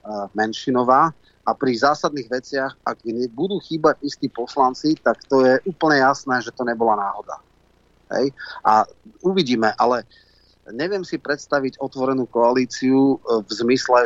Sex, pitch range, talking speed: male, 120-145 Hz, 130 wpm